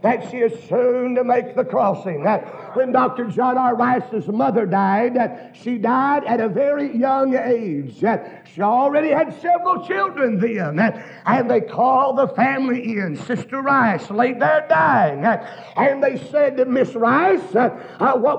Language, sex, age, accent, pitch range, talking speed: English, male, 50-69, American, 235-285 Hz, 145 wpm